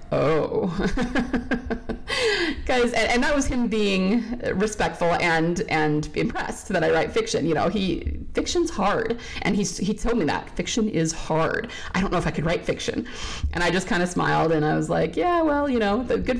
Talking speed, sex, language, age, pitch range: 190 wpm, female, English, 30-49, 165-245 Hz